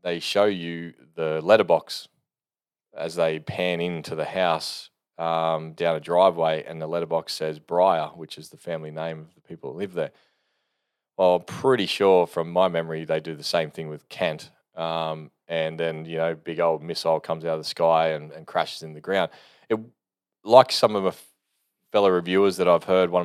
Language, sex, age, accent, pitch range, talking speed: English, male, 20-39, Australian, 80-90 Hz, 190 wpm